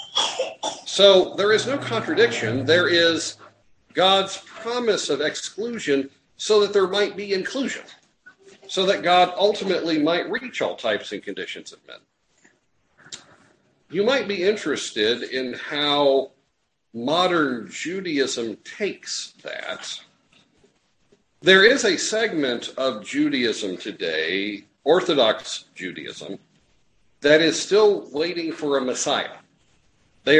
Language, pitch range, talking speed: English, 135-195 Hz, 110 wpm